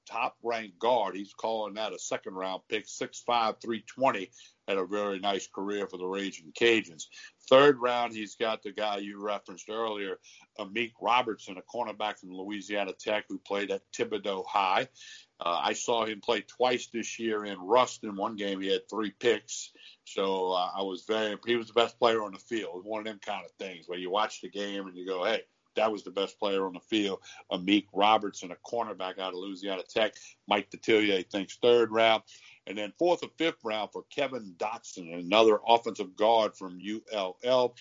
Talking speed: 195 wpm